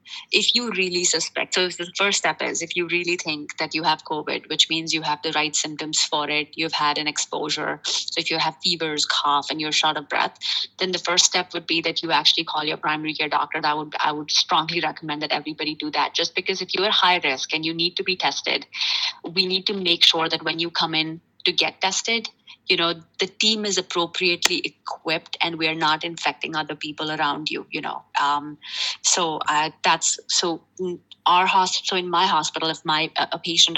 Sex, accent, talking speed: female, Indian, 225 wpm